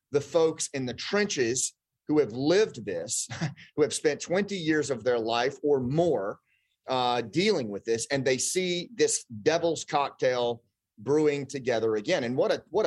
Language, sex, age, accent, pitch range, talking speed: English, male, 30-49, American, 125-165 Hz, 170 wpm